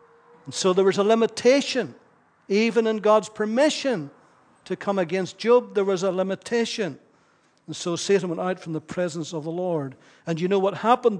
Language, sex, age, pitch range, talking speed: English, male, 60-79, 170-215 Hz, 180 wpm